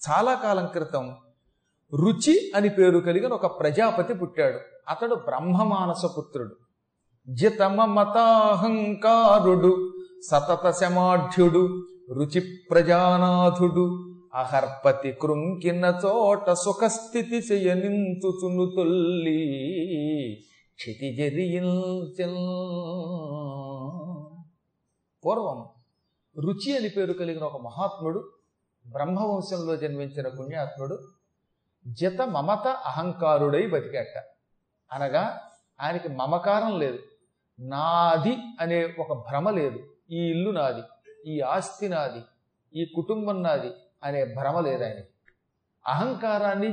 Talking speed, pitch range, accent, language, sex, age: 70 wpm, 155-210 Hz, native, Telugu, male, 40-59